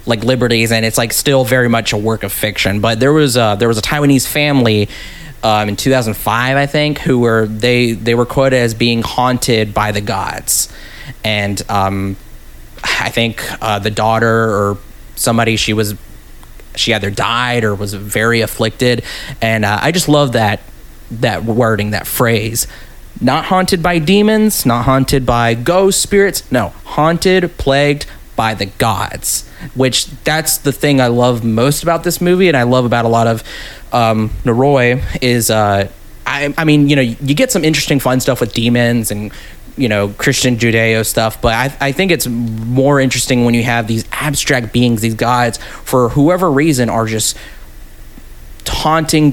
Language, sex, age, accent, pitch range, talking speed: English, male, 30-49, American, 110-140 Hz, 175 wpm